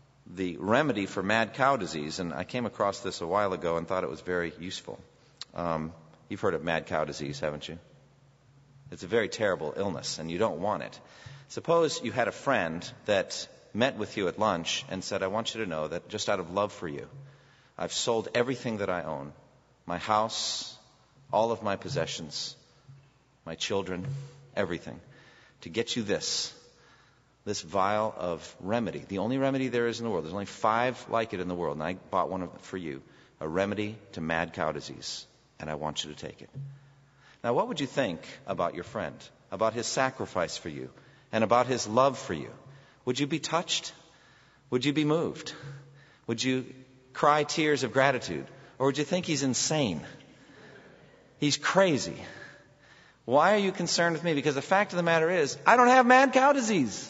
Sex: male